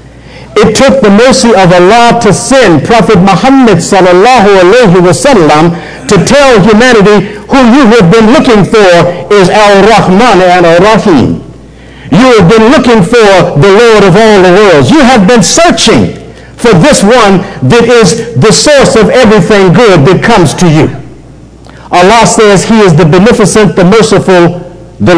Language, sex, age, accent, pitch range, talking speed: English, male, 60-79, American, 175-225 Hz, 155 wpm